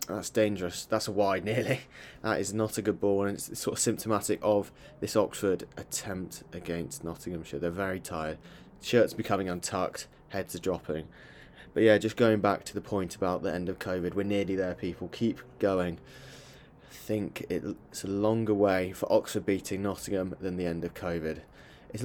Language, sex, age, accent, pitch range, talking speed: English, male, 20-39, British, 95-115 Hz, 180 wpm